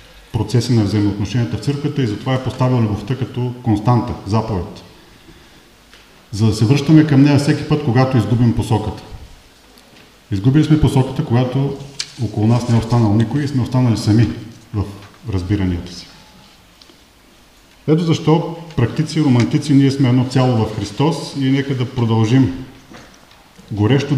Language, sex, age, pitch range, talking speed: English, male, 40-59, 105-135 Hz, 140 wpm